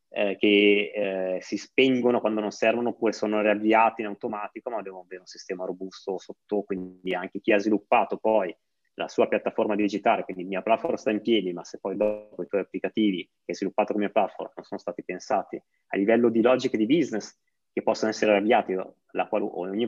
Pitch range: 100-115 Hz